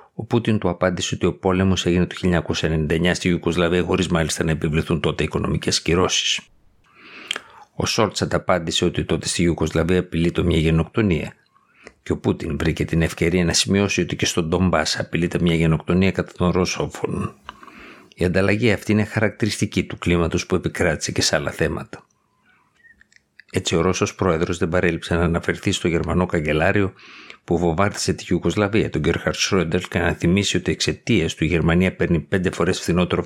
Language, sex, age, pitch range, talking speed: Greek, male, 50-69, 85-95 Hz, 160 wpm